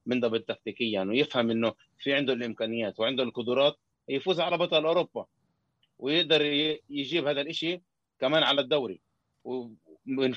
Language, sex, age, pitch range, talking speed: Arabic, male, 20-39, 115-150 Hz, 125 wpm